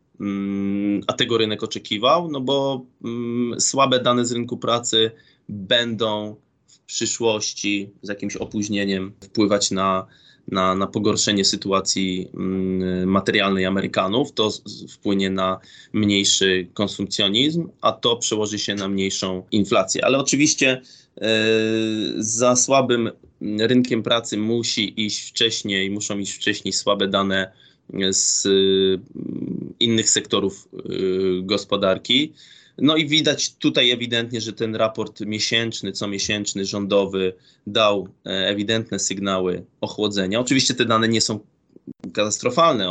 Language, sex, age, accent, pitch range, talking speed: Polish, male, 20-39, native, 95-115 Hz, 105 wpm